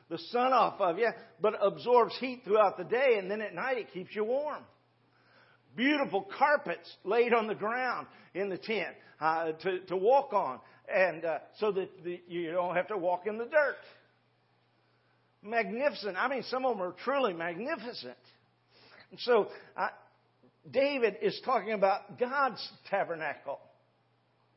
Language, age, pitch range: English, 50-69, 185-245 Hz